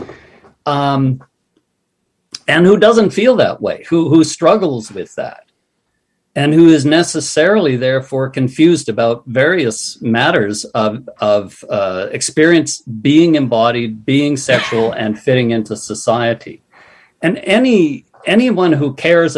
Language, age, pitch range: English, 60-79, 120-160 Hz